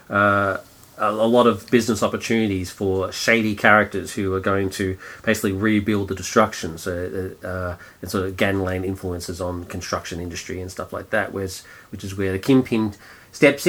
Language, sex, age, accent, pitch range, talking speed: English, male, 30-49, Australian, 95-130 Hz, 175 wpm